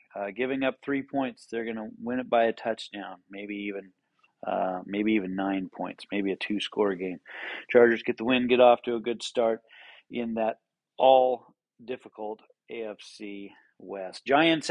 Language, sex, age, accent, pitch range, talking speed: English, male, 40-59, American, 110-130 Hz, 165 wpm